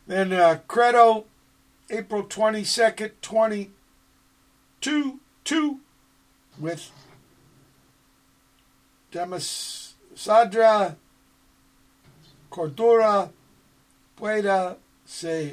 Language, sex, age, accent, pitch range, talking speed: English, male, 60-79, American, 140-200 Hz, 55 wpm